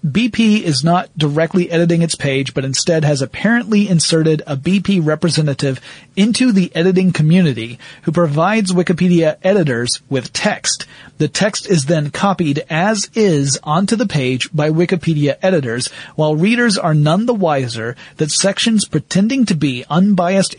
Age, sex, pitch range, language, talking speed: 40-59, male, 145-185 Hz, English, 145 wpm